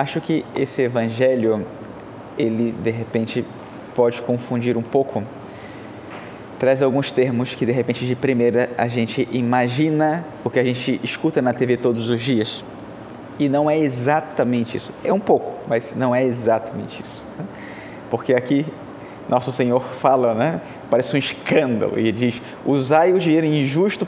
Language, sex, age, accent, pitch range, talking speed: Portuguese, male, 20-39, Brazilian, 120-150 Hz, 150 wpm